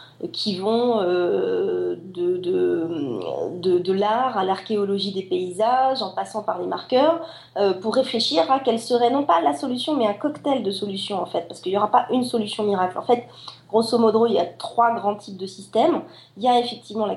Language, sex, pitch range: French, female, 190-245 Hz